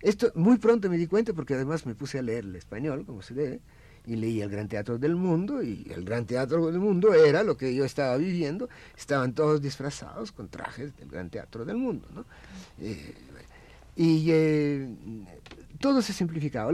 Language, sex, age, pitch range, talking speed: Spanish, male, 50-69, 100-160 Hz, 190 wpm